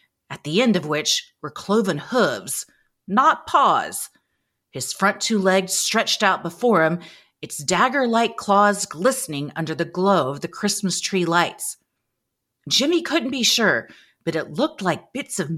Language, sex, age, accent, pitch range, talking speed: English, female, 40-59, American, 160-220 Hz, 155 wpm